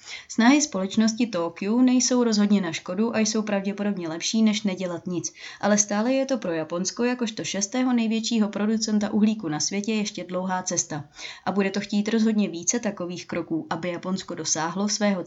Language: Czech